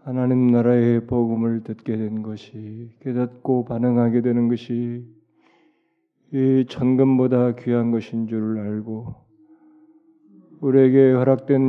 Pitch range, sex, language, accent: 120-140 Hz, male, Korean, native